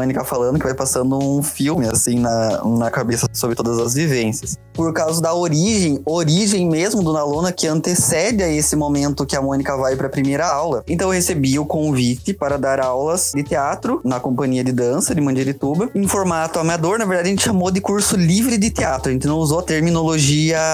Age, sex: 20-39, male